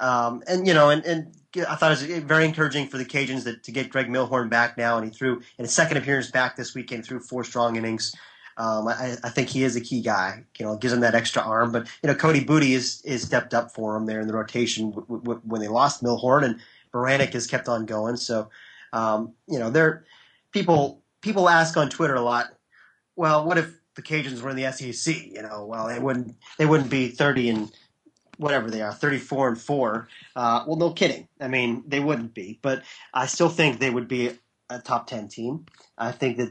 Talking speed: 230 wpm